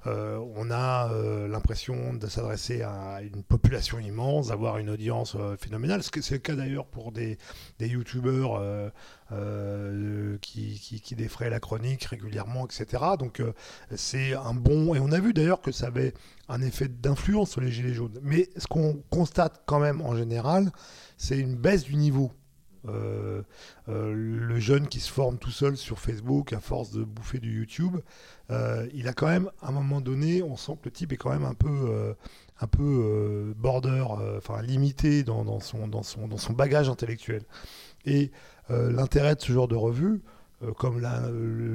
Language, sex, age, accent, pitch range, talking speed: French, male, 40-59, French, 110-135 Hz, 195 wpm